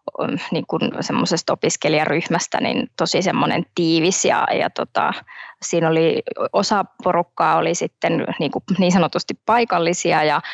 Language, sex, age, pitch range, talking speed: Finnish, female, 20-39, 170-190 Hz, 125 wpm